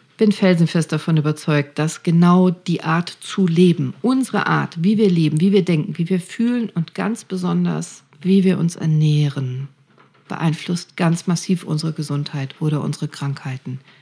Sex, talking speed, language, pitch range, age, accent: female, 160 wpm, German, 145-175 Hz, 50-69, German